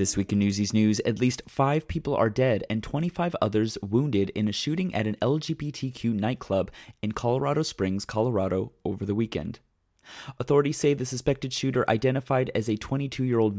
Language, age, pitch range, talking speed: English, 30-49, 100-140 Hz, 170 wpm